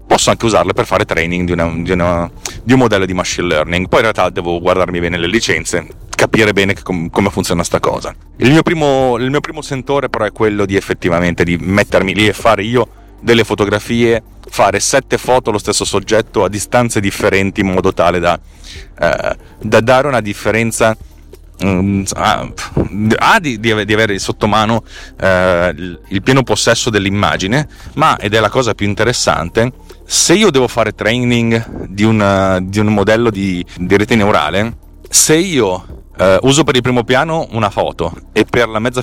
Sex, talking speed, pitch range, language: male, 180 wpm, 95-125 Hz, Italian